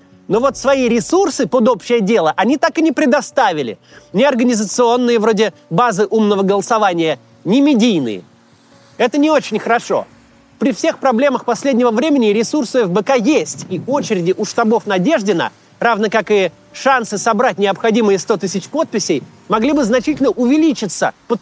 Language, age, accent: Russian, 30-49, native